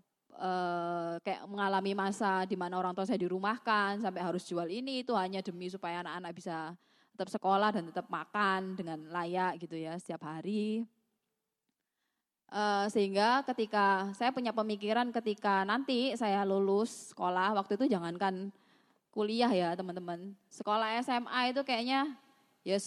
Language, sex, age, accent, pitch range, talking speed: Indonesian, female, 20-39, native, 185-240 Hz, 135 wpm